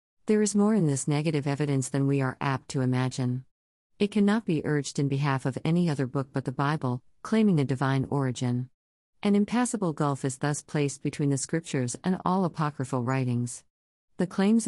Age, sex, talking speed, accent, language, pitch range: 50-69, female, 185 wpm, American, English, 130-165 Hz